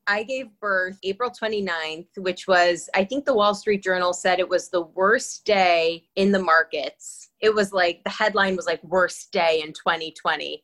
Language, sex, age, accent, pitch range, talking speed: English, female, 20-39, American, 170-215 Hz, 185 wpm